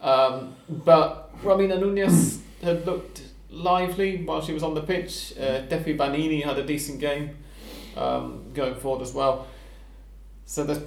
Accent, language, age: British, English, 30-49